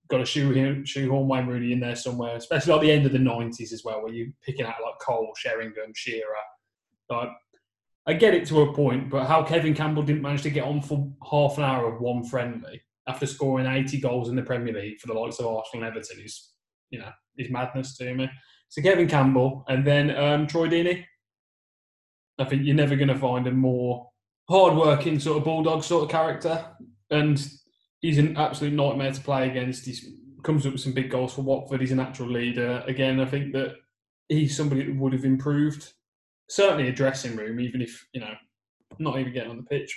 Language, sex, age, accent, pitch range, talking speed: English, male, 10-29, British, 120-145 Hz, 210 wpm